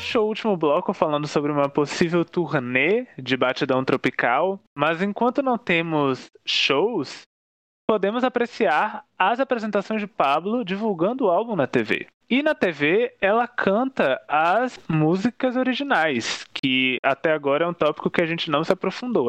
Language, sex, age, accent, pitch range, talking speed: Portuguese, male, 20-39, Brazilian, 150-225 Hz, 145 wpm